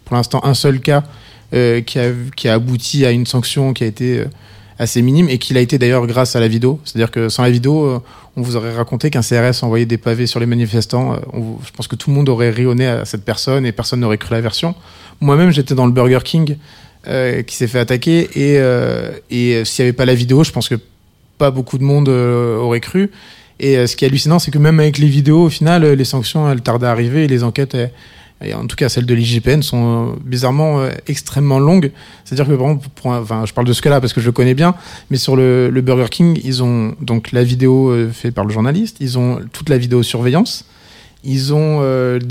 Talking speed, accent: 250 wpm, French